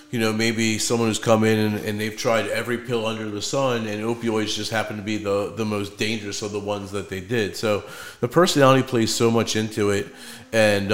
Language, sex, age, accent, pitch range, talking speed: English, male, 30-49, American, 100-115 Hz, 225 wpm